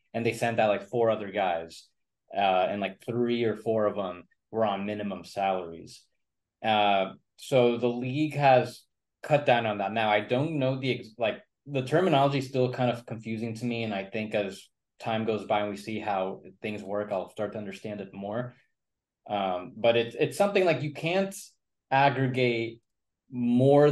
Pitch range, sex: 105-130 Hz, male